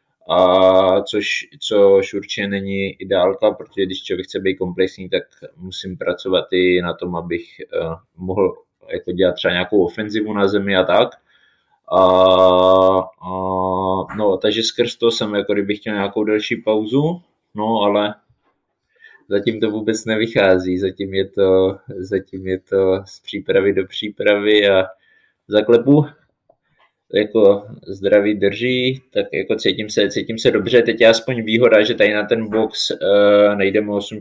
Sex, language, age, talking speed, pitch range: male, Czech, 20-39, 145 wpm, 95-110 Hz